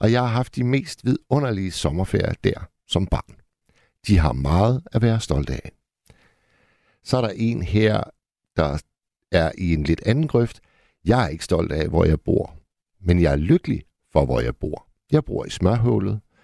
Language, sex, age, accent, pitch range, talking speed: Danish, male, 60-79, native, 85-120 Hz, 185 wpm